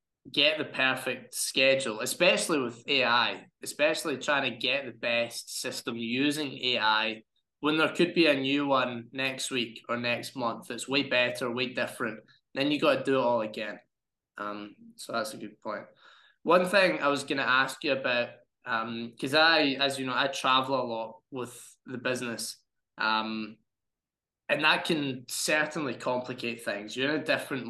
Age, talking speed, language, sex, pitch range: 20-39, 175 wpm, English, male, 115-140 Hz